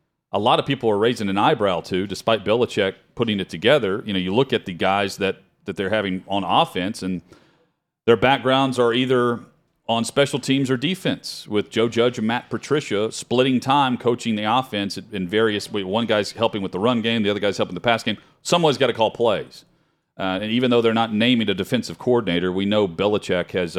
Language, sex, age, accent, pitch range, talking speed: English, male, 40-59, American, 95-115 Hz, 210 wpm